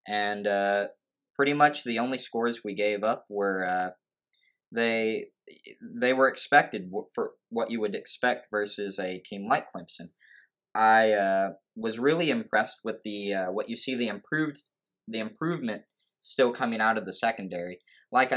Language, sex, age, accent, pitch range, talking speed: English, male, 20-39, American, 105-130 Hz, 155 wpm